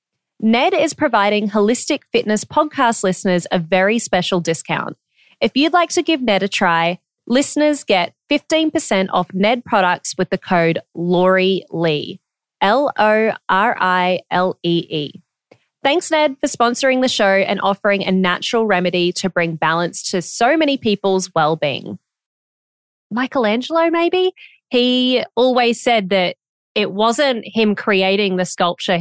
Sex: female